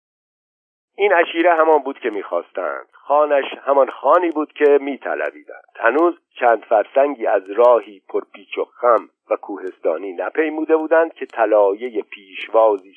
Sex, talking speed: male, 130 wpm